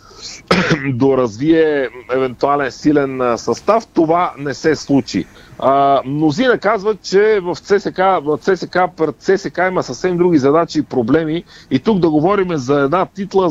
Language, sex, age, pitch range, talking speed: Bulgarian, male, 40-59, 135-175 Hz, 140 wpm